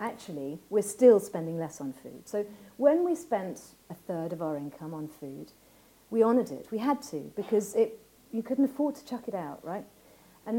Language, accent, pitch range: English, British, 170-230 Hz